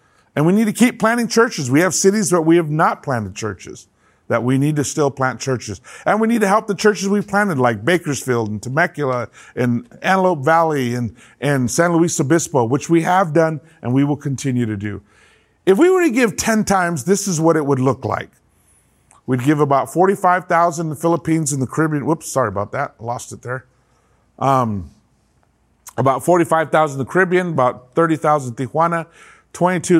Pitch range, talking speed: 130-175 Hz, 190 wpm